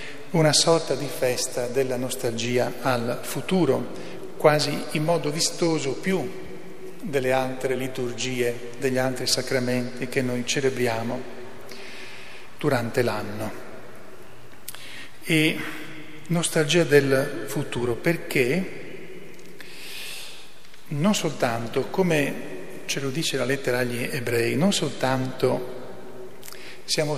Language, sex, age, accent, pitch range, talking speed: Italian, male, 40-59, native, 130-150 Hz, 95 wpm